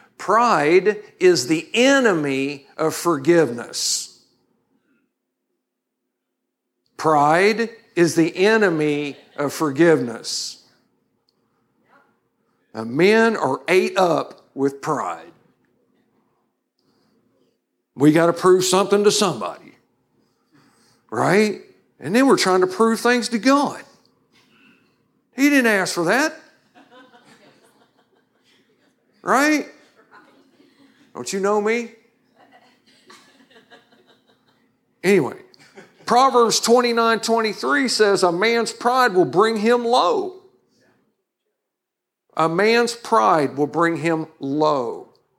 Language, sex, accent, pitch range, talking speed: English, male, American, 160-245 Hz, 90 wpm